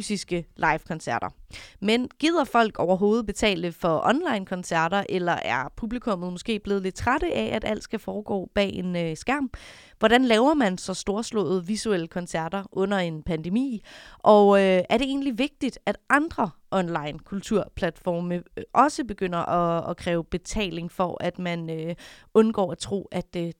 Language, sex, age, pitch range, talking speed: Danish, female, 30-49, 190-235 Hz, 150 wpm